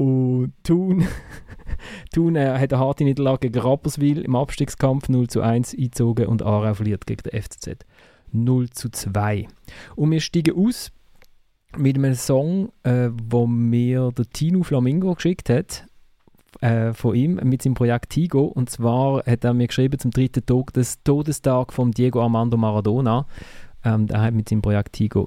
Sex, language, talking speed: male, German, 165 wpm